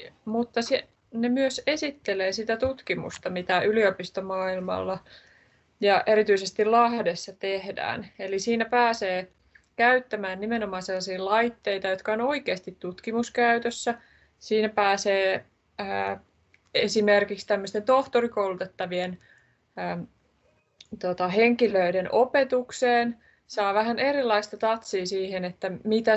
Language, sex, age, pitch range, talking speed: Finnish, female, 20-39, 185-215 Hz, 85 wpm